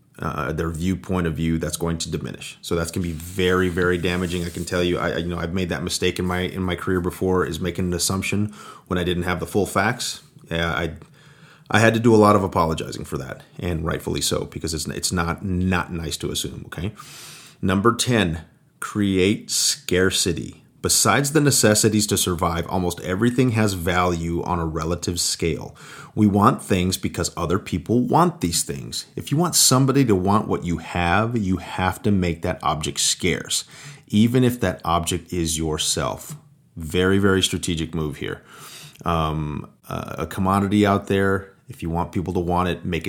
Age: 30-49